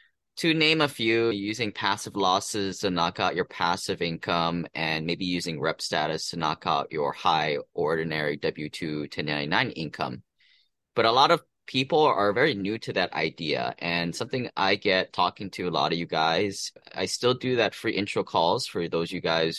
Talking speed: 185 wpm